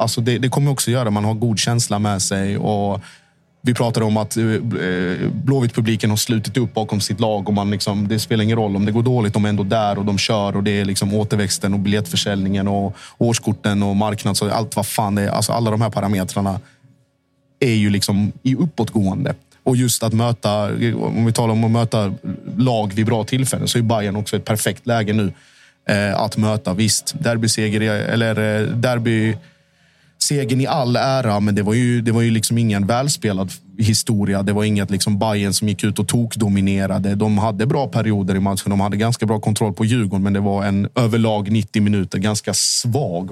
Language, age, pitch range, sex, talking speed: Swedish, 20-39, 105-120 Hz, male, 200 wpm